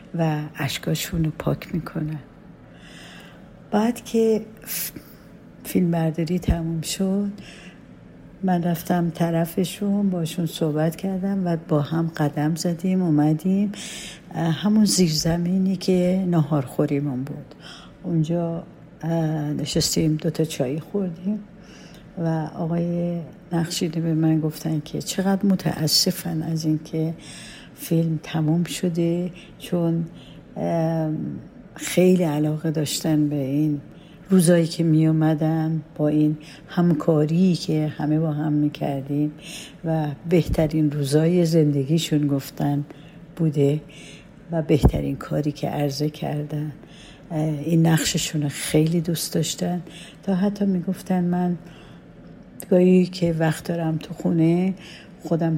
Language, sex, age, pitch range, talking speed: Persian, female, 60-79, 155-180 Hz, 100 wpm